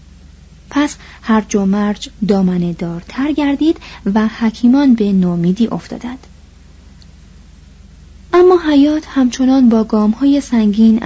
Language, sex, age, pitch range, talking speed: Persian, female, 30-49, 185-255 Hz, 85 wpm